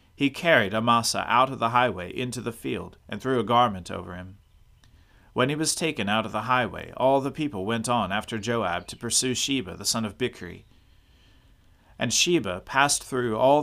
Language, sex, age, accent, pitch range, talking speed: English, male, 40-59, American, 100-135 Hz, 190 wpm